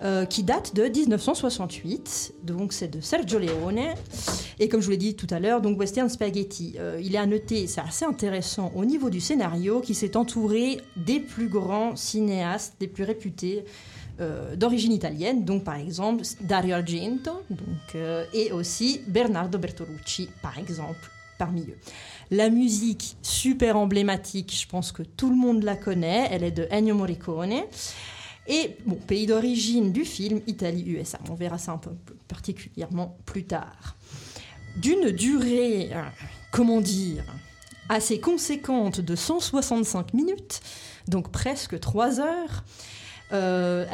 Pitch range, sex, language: 175-225 Hz, female, French